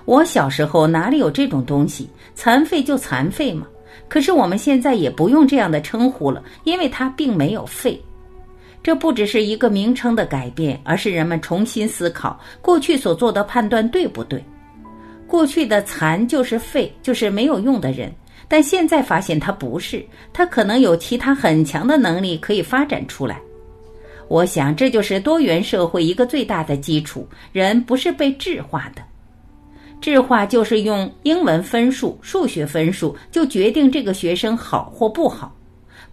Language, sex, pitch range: Chinese, female, 160-260 Hz